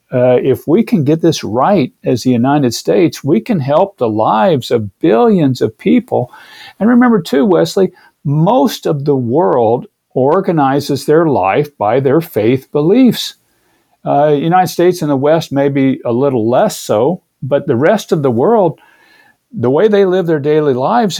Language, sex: English, male